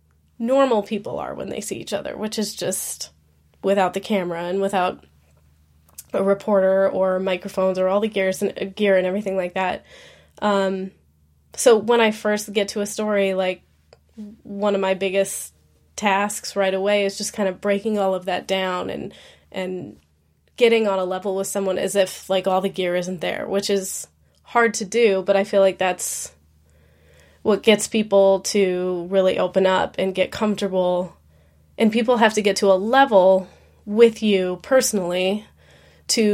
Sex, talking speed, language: female, 175 wpm, English